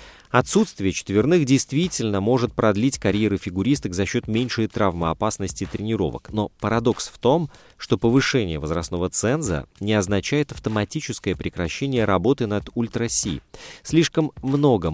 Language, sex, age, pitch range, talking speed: Russian, male, 30-49, 95-125 Hz, 115 wpm